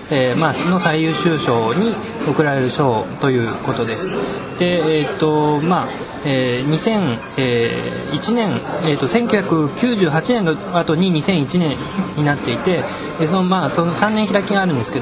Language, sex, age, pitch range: Japanese, male, 20-39, 135-185 Hz